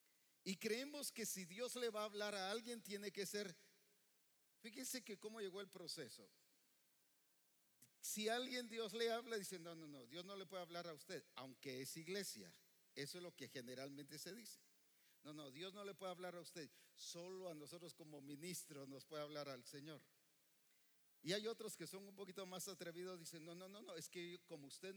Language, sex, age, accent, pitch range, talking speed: English, male, 50-69, Mexican, 150-210 Hz, 200 wpm